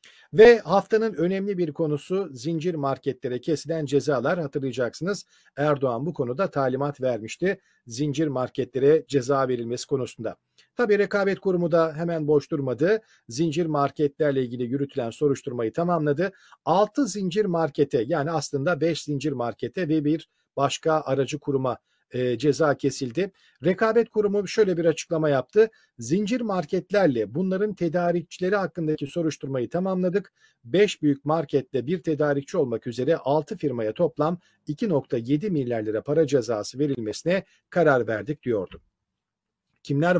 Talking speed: 120 wpm